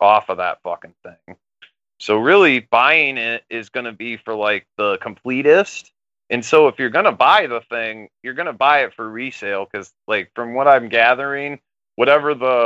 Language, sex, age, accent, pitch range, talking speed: English, male, 30-49, American, 110-145 Hz, 195 wpm